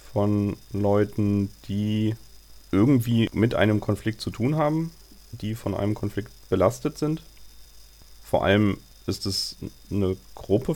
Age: 30-49